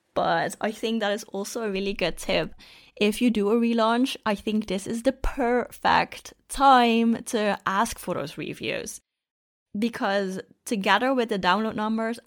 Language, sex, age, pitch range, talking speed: English, female, 20-39, 190-230 Hz, 160 wpm